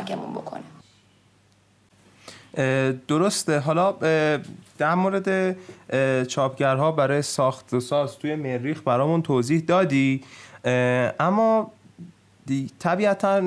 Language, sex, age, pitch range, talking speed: Persian, male, 20-39, 110-155 Hz, 70 wpm